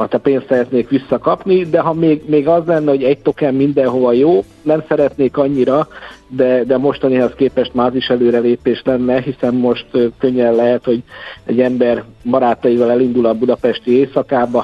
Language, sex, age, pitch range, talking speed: Hungarian, male, 50-69, 115-130 Hz, 155 wpm